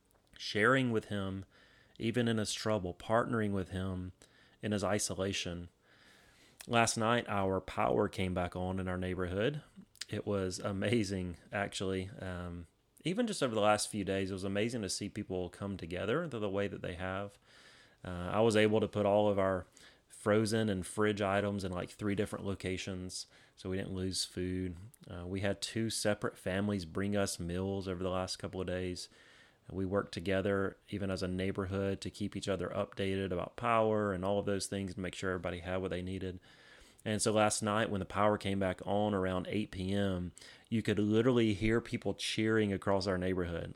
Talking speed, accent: 185 wpm, American